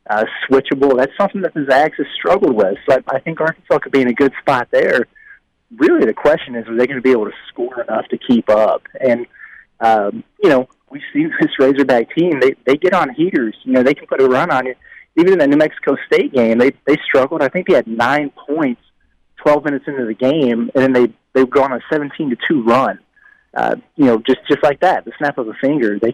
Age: 30-49